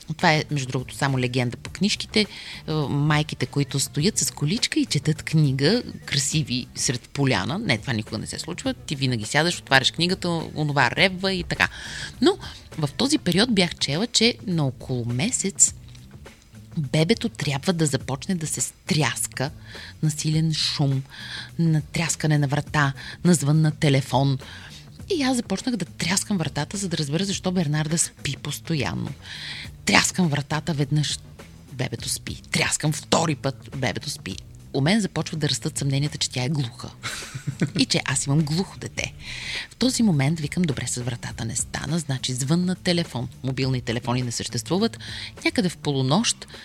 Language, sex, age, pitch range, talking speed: Bulgarian, female, 30-49, 125-170 Hz, 155 wpm